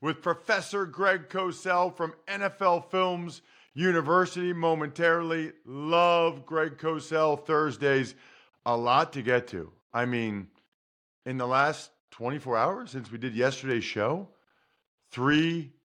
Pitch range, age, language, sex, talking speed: 135-185 Hz, 40-59, English, male, 115 wpm